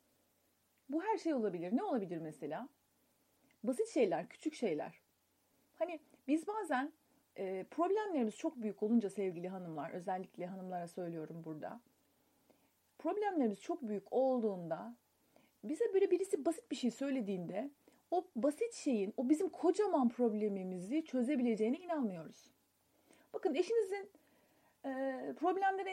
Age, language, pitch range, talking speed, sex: 40-59, Turkish, 225-345 Hz, 110 wpm, female